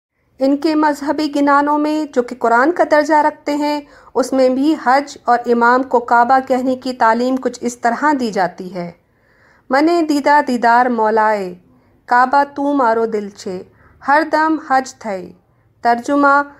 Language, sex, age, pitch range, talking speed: Urdu, female, 40-59, 235-285 Hz, 155 wpm